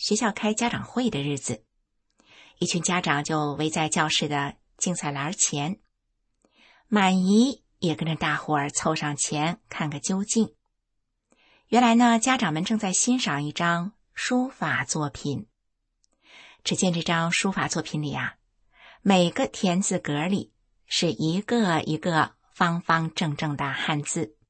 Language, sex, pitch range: Chinese, female, 155-215 Hz